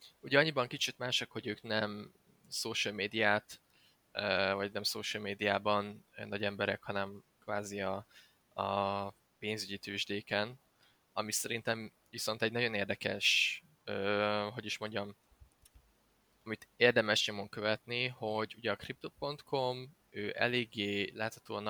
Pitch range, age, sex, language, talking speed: 100-115 Hz, 20-39, male, Hungarian, 110 wpm